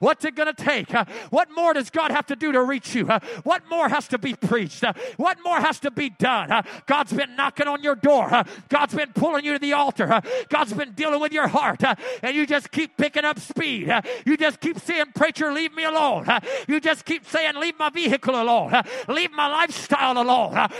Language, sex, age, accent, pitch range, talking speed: English, male, 40-59, American, 210-305 Hz, 210 wpm